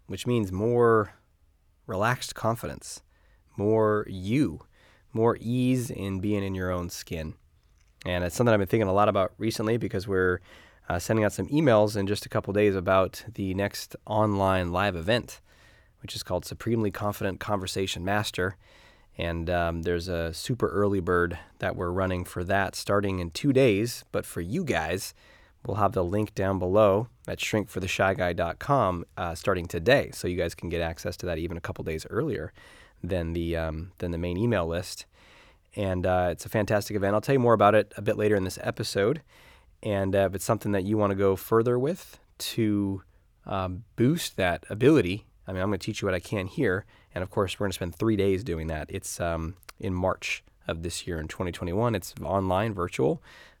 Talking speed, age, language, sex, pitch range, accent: 190 wpm, 20-39, English, male, 90-105 Hz, American